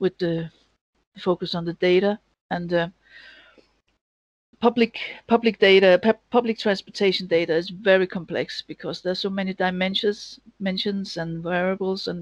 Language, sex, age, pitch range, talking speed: English, female, 50-69, 180-210 Hz, 135 wpm